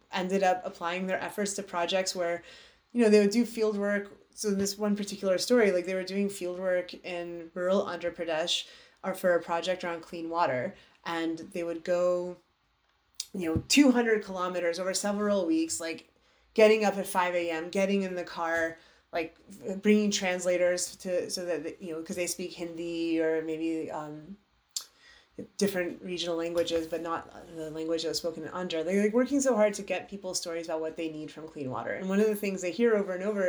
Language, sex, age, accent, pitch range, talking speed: English, female, 30-49, American, 165-195 Hz, 195 wpm